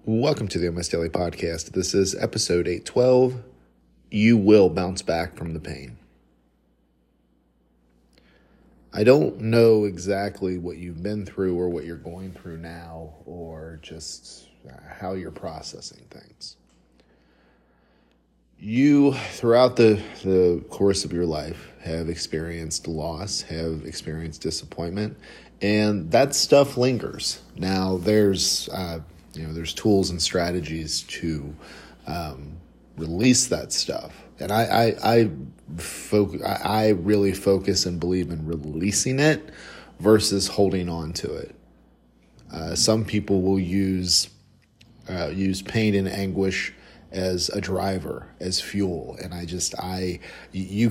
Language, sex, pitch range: English, male, 80-105 Hz